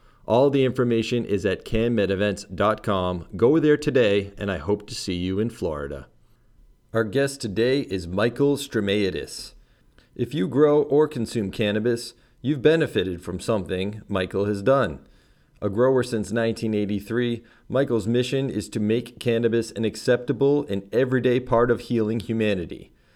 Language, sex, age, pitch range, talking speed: English, male, 40-59, 105-125 Hz, 140 wpm